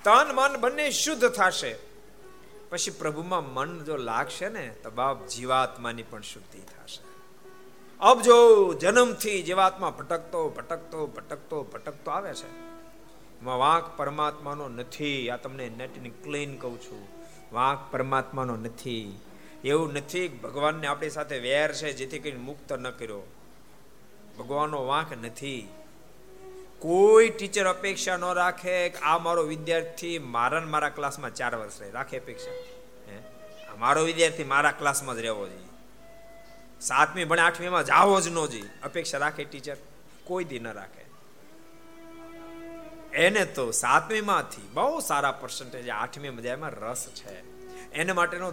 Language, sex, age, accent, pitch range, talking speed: Gujarati, male, 50-69, native, 135-210 Hz, 85 wpm